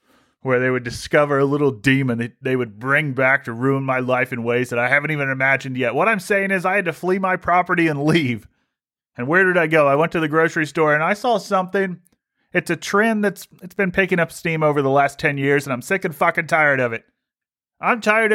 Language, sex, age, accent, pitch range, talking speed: English, male, 30-49, American, 140-205 Hz, 245 wpm